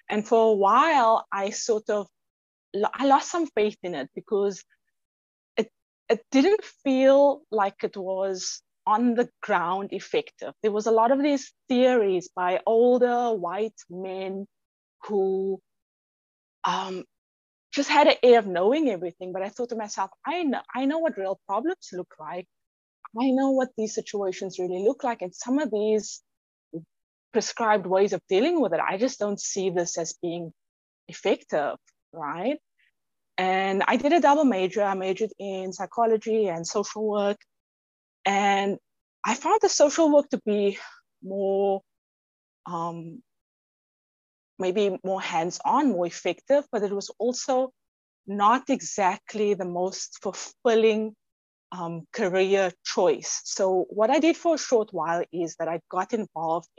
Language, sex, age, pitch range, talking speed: English, female, 20-39, 185-245 Hz, 145 wpm